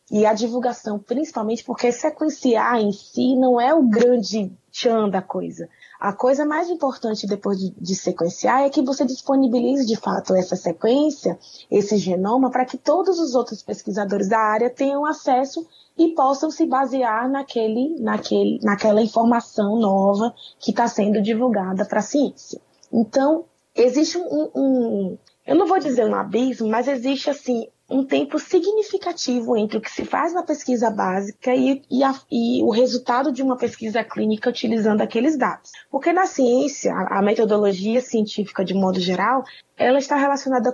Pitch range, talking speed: 215-275 Hz, 155 wpm